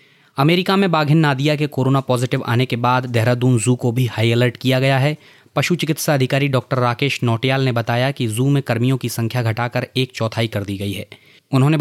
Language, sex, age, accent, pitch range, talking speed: Hindi, male, 20-39, native, 120-145 Hz, 210 wpm